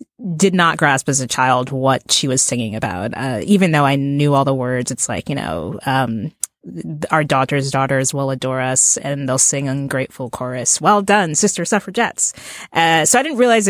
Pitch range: 130-180 Hz